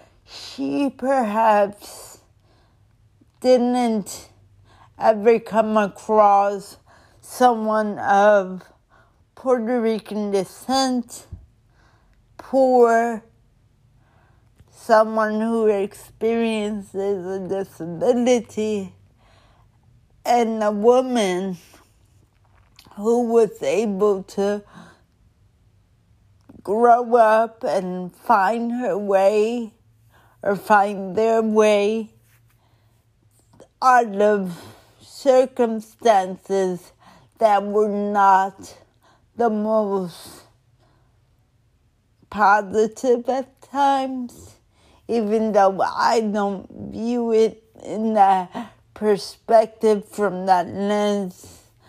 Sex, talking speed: female, 65 wpm